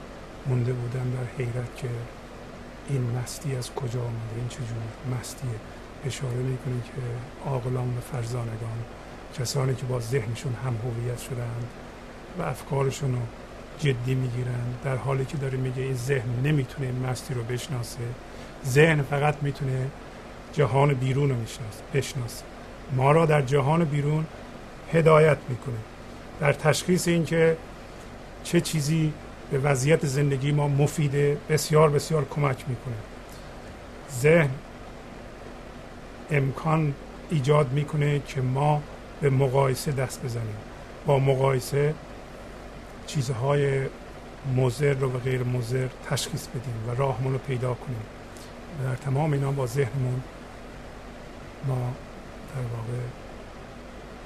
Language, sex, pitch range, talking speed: Persian, male, 125-145 Hz, 115 wpm